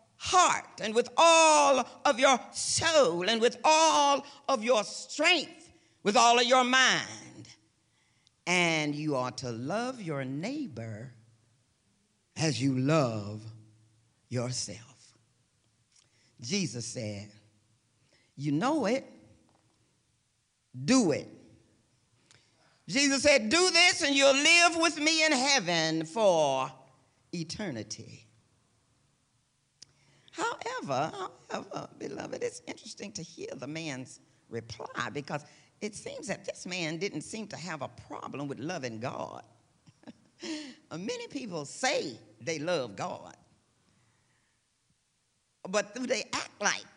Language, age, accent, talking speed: English, 50-69, American, 105 wpm